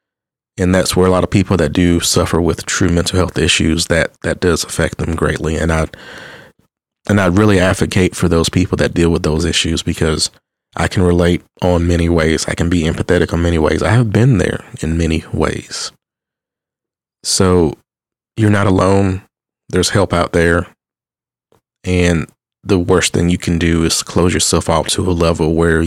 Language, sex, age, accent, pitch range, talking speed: English, male, 30-49, American, 85-95 Hz, 185 wpm